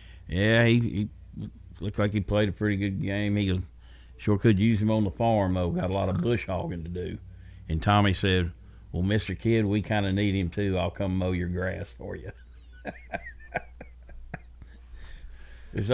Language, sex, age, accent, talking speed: English, male, 60-79, American, 180 wpm